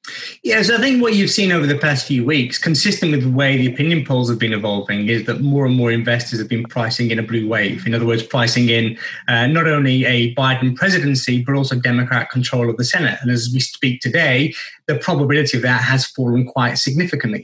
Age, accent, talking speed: 20-39, British, 225 wpm